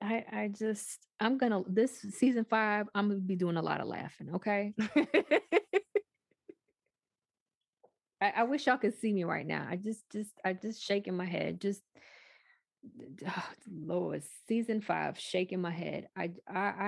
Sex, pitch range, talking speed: female, 185-265 Hz, 155 wpm